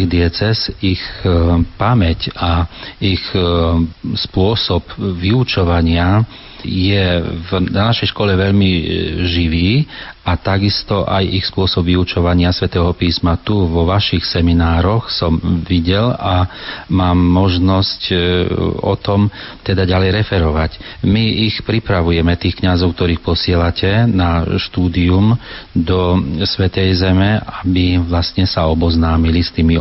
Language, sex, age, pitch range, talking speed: Slovak, male, 40-59, 85-95 Hz, 110 wpm